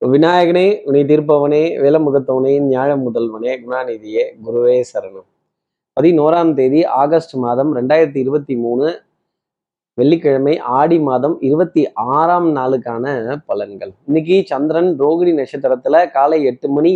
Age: 20-39